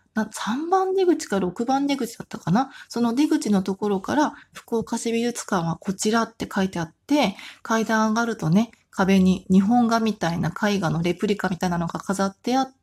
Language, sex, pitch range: Japanese, female, 185-235 Hz